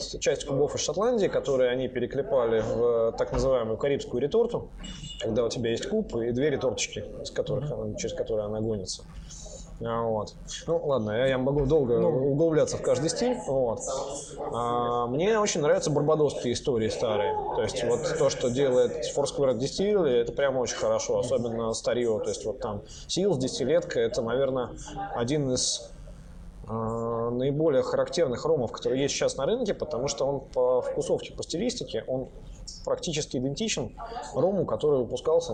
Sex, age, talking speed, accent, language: male, 20-39, 150 wpm, native, Russian